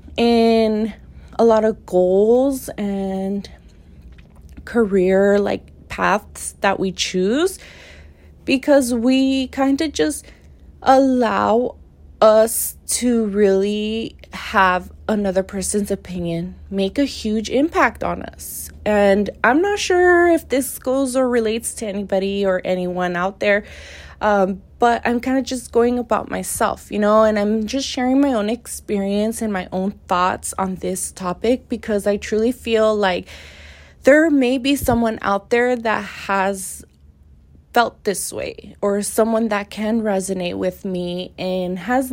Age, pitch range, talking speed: 20-39, 185-240 Hz, 135 wpm